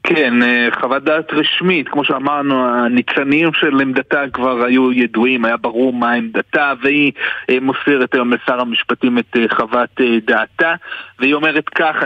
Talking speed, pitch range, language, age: 135 wpm, 125-155 Hz, Hebrew, 30-49